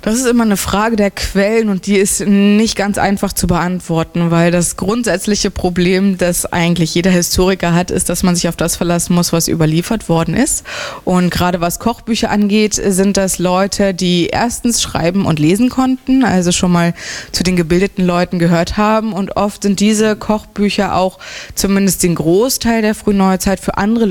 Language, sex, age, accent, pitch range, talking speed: German, female, 20-39, German, 180-210 Hz, 180 wpm